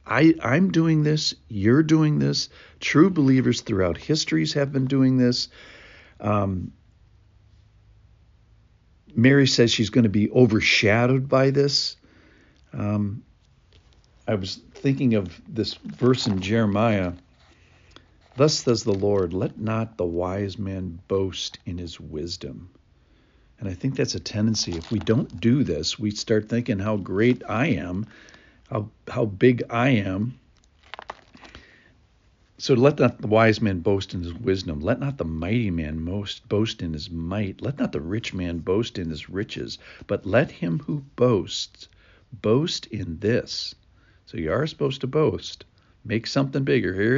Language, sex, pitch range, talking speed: English, male, 90-120 Hz, 145 wpm